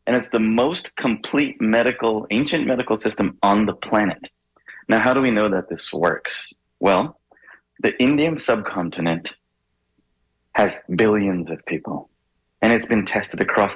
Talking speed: 145 wpm